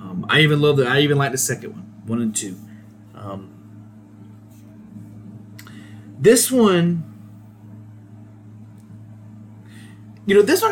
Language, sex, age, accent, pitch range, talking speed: English, male, 30-49, American, 105-145 Hz, 110 wpm